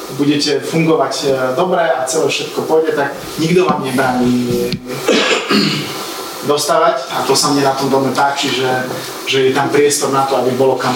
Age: 30-49